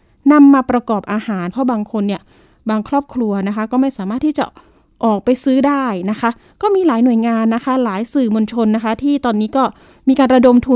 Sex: female